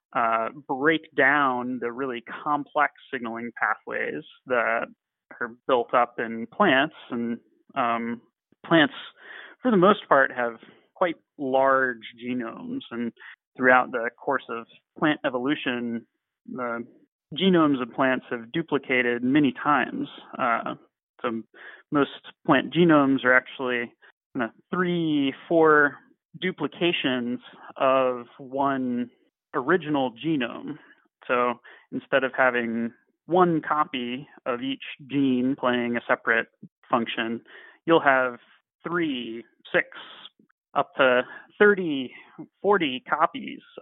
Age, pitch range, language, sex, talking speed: 30-49, 120-155 Hz, English, male, 105 wpm